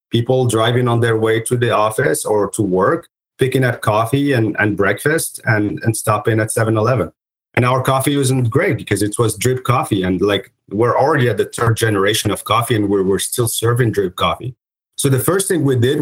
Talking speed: 205 wpm